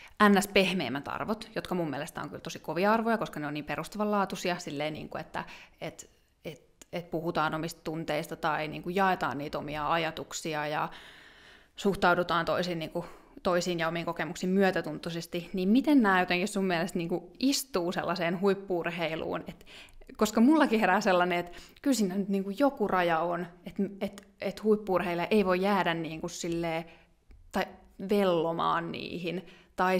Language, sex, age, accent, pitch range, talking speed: Finnish, female, 20-39, native, 165-205 Hz, 160 wpm